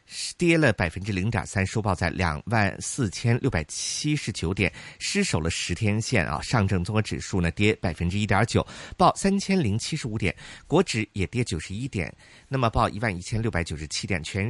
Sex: male